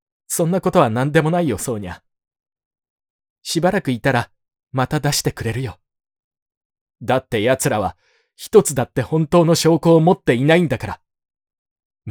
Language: Japanese